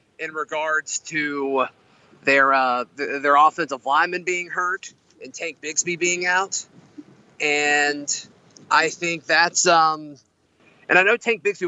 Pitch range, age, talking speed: 145-185 Hz, 30-49, 130 wpm